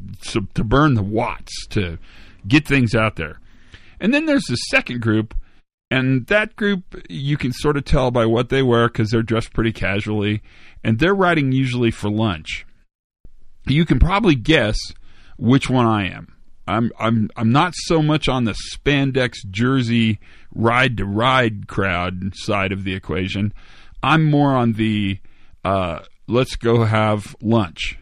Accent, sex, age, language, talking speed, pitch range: American, male, 40-59, English, 150 wpm, 100-130 Hz